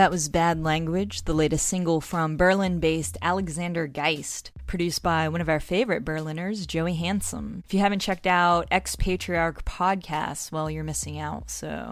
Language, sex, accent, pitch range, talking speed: English, female, American, 155-190 Hz, 160 wpm